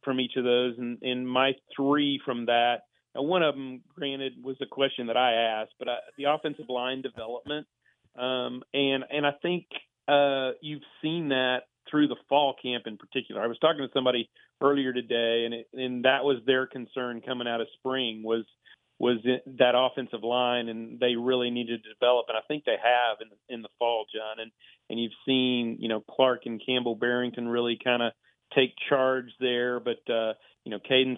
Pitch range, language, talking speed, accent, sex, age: 120-135 Hz, English, 200 wpm, American, male, 40-59